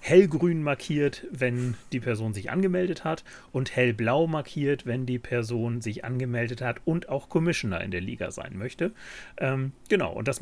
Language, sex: German, male